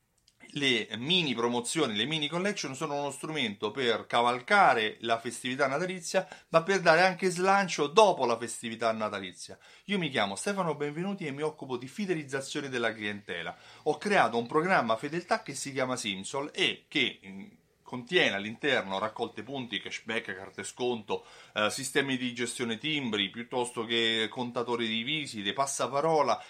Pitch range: 120-185 Hz